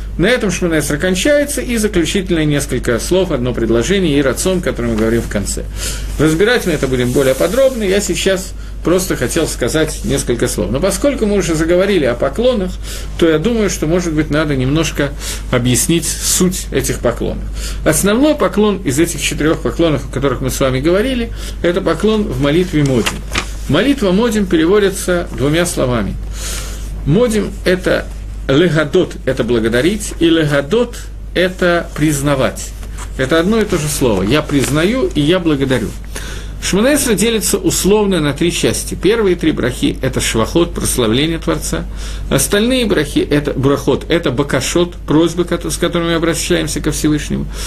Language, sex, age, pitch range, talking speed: Russian, male, 50-69, 130-185 Hz, 160 wpm